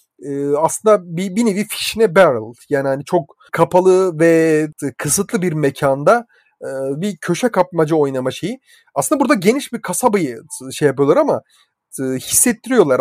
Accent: native